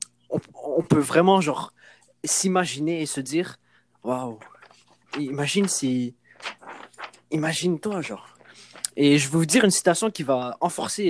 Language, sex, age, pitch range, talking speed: French, male, 20-39, 125-165 Hz, 125 wpm